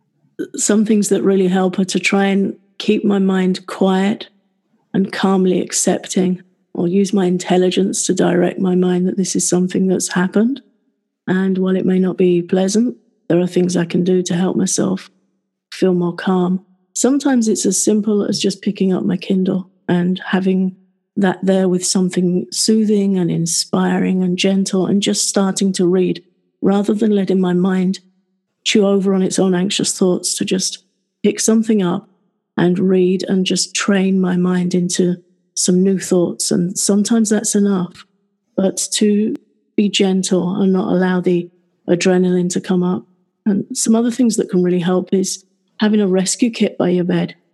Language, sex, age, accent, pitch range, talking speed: English, female, 40-59, British, 185-205 Hz, 170 wpm